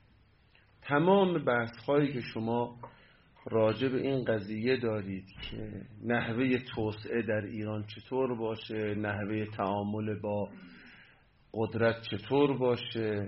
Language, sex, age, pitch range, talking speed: Persian, male, 40-59, 110-140 Hz, 100 wpm